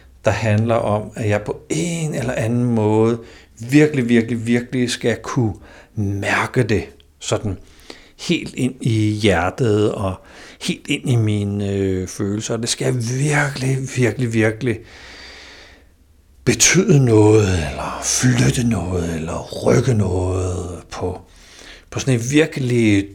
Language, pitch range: Danish, 95-120 Hz